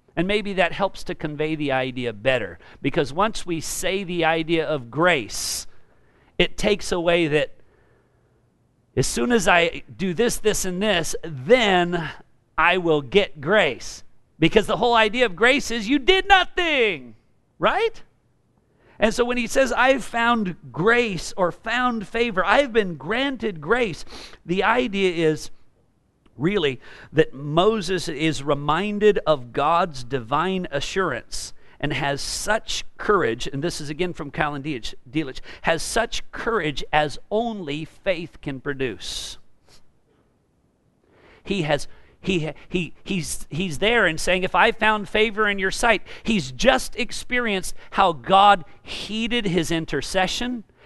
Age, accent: 50-69, American